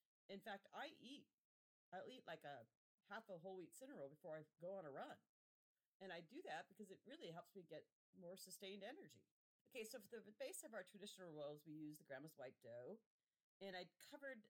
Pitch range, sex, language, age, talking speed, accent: 140-195 Hz, female, English, 40-59, 210 wpm, American